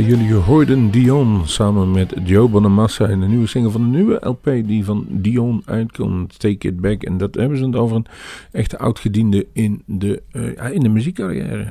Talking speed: 185 wpm